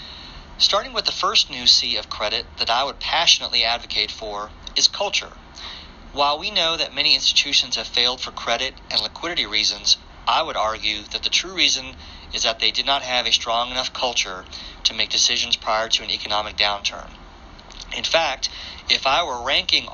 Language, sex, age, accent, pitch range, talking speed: English, male, 40-59, American, 90-125 Hz, 180 wpm